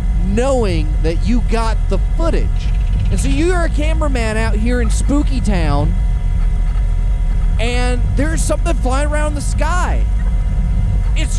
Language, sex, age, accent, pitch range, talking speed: English, male, 30-49, American, 85-95 Hz, 125 wpm